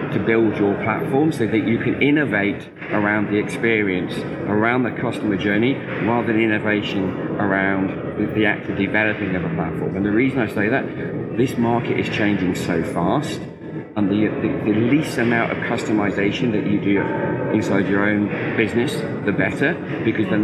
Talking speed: 165 wpm